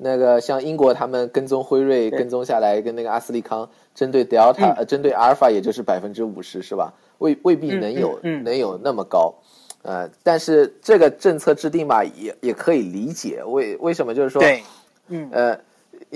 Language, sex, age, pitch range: Chinese, male, 20-39, 115-155 Hz